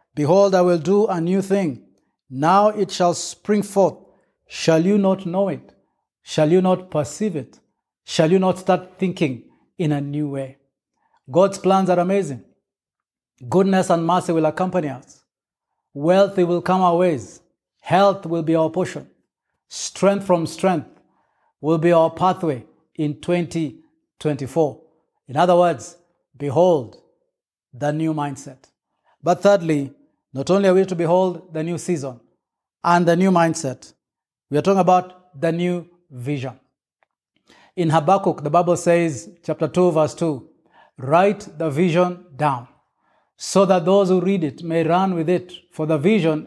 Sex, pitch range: male, 155-185 Hz